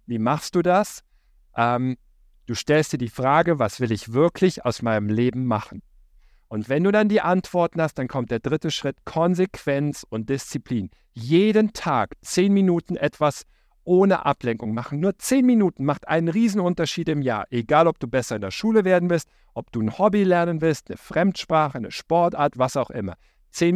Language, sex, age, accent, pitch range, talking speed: German, male, 50-69, German, 120-175 Hz, 180 wpm